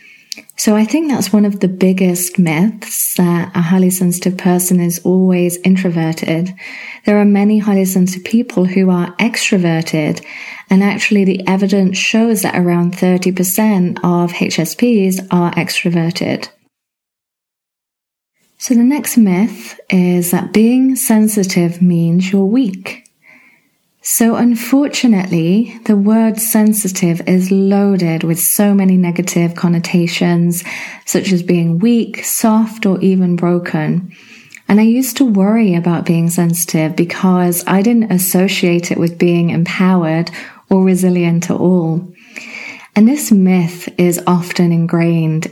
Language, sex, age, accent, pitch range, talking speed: English, female, 30-49, British, 175-210 Hz, 125 wpm